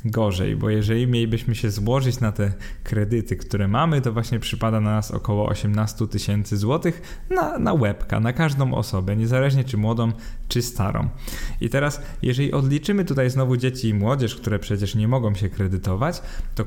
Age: 20-39